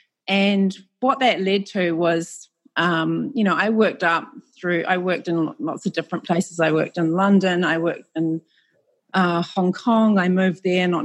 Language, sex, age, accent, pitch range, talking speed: English, female, 30-49, Australian, 165-195 Hz, 185 wpm